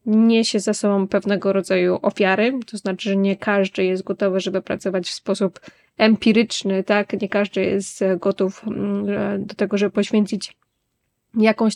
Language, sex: Polish, female